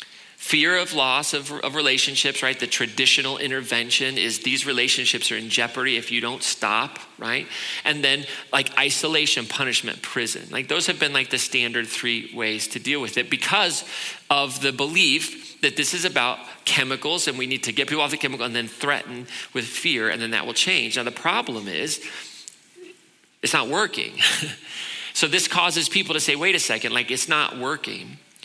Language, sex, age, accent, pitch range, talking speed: English, male, 40-59, American, 125-170 Hz, 185 wpm